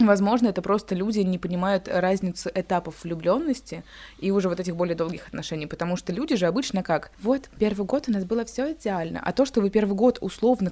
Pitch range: 175-240 Hz